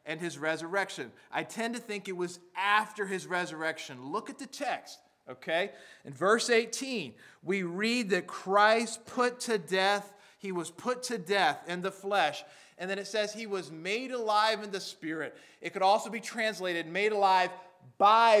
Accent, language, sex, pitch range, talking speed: American, English, male, 175-220 Hz, 175 wpm